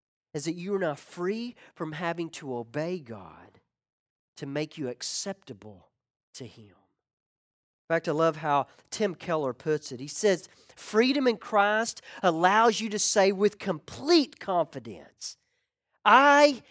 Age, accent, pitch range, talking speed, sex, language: 40-59, American, 150-245 Hz, 140 wpm, male, English